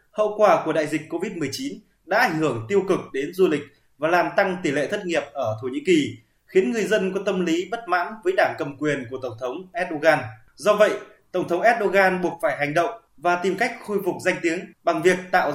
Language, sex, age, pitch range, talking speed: Vietnamese, male, 20-39, 160-210 Hz, 230 wpm